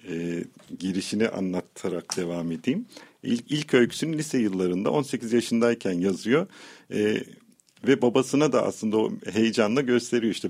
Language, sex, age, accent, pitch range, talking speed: Turkish, male, 50-69, native, 95-140 Hz, 125 wpm